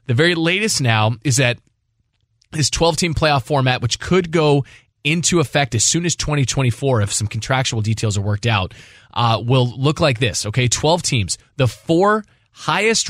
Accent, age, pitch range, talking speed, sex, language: American, 20-39, 115-150 Hz, 175 wpm, male, English